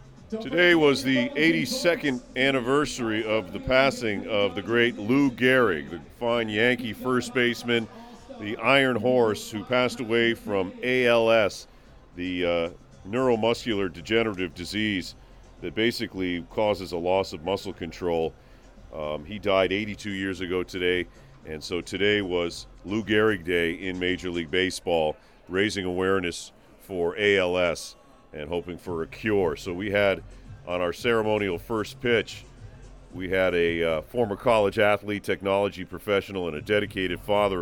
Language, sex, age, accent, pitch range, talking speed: English, male, 40-59, American, 90-115 Hz, 140 wpm